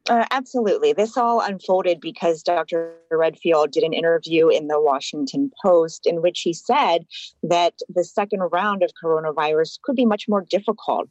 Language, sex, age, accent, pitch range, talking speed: English, female, 30-49, American, 170-235 Hz, 160 wpm